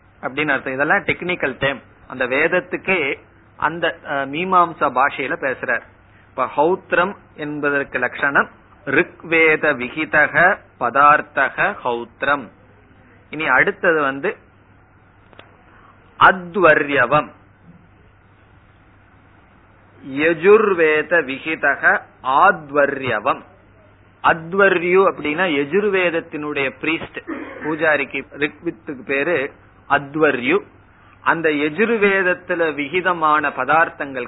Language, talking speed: Tamil, 40 wpm